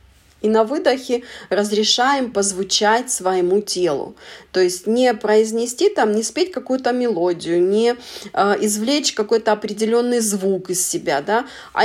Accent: native